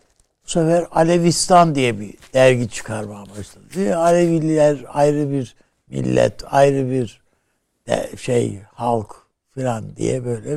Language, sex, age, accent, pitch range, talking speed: Turkish, male, 60-79, native, 105-145 Hz, 115 wpm